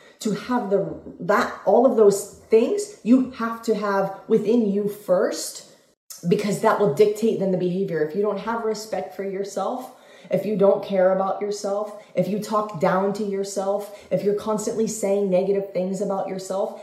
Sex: female